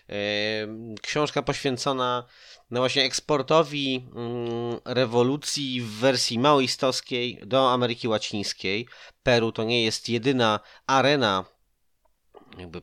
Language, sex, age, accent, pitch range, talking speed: Polish, male, 30-49, native, 105-125 Hz, 90 wpm